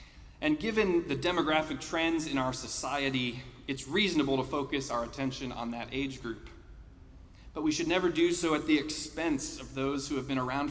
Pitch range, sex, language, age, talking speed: 120-170 Hz, male, English, 30-49, 185 wpm